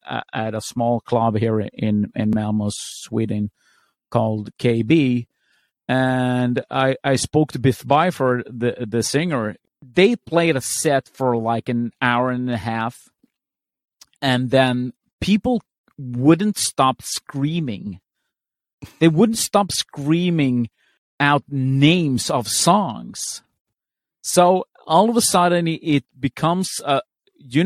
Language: English